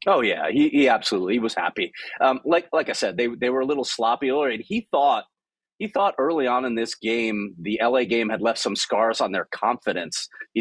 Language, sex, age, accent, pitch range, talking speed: English, male, 30-49, American, 110-140 Hz, 230 wpm